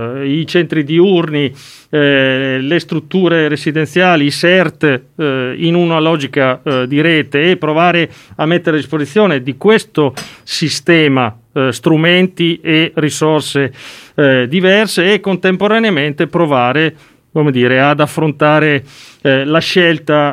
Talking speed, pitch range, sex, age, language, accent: 120 wpm, 135-170 Hz, male, 40-59, Italian, native